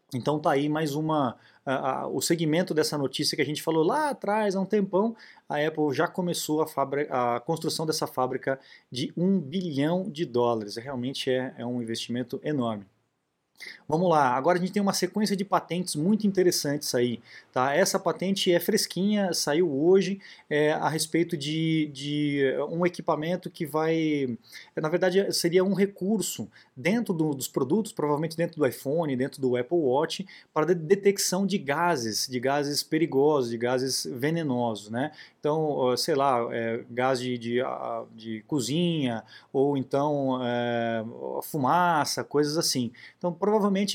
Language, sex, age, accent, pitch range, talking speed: Portuguese, male, 20-39, Brazilian, 130-175 Hz, 145 wpm